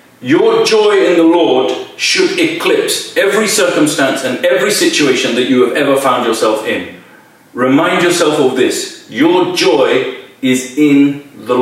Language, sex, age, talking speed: English, male, 40-59, 145 wpm